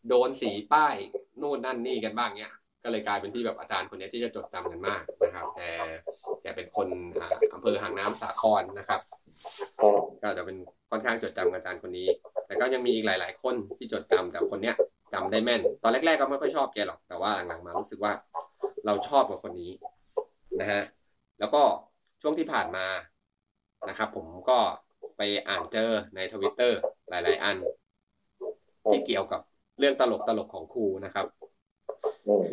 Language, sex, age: Thai, male, 20-39